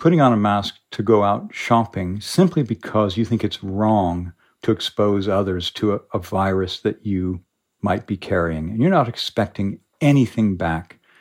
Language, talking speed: English, 170 wpm